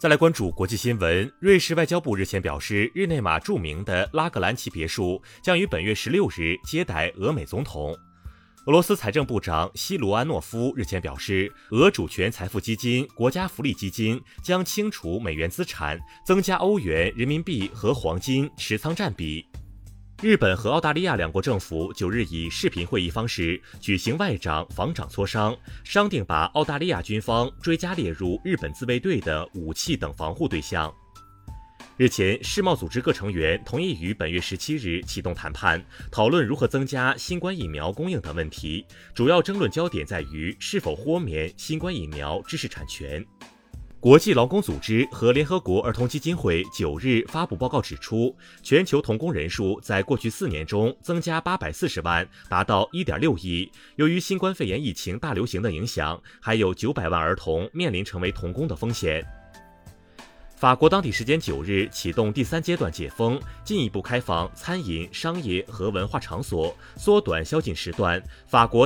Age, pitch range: 30-49, 90-150 Hz